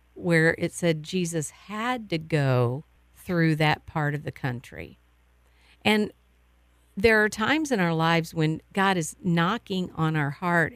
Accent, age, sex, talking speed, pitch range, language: American, 50-69, female, 150 wpm, 145-195 Hz, English